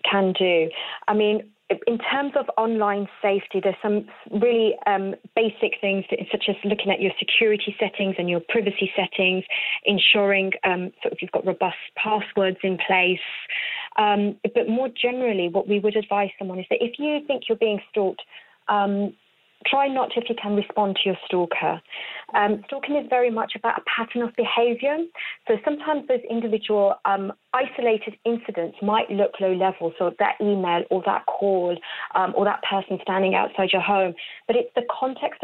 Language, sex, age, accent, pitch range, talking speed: English, female, 30-49, British, 195-230 Hz, 175 wpm